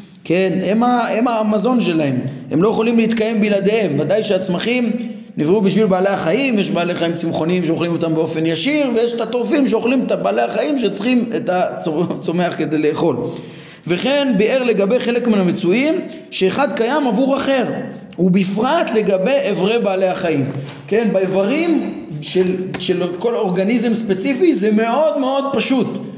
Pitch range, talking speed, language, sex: 185-245 Hz, 140 wpm, Hebrew, male